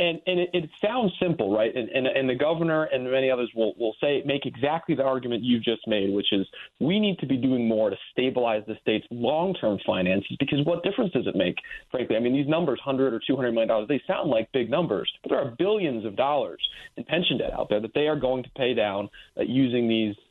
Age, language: 30-49, English